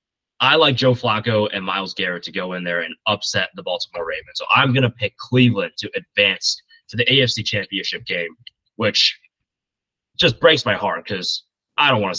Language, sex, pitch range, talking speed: English, male, 100-140 Hz, 190 wpm